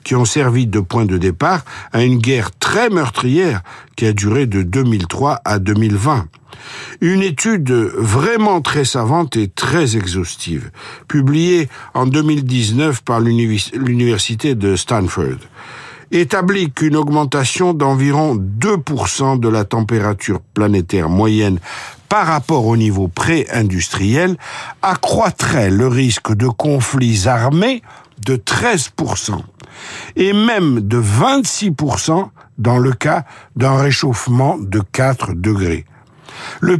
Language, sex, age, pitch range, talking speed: French, male, 60-79, 110-155 Hz, 115 wpm